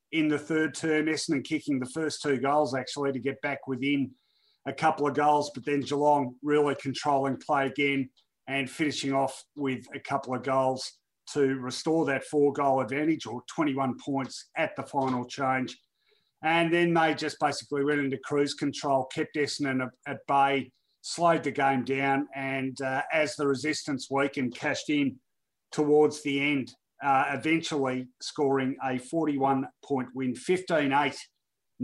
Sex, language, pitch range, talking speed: male, English, 135-150 Hz, 155 wpm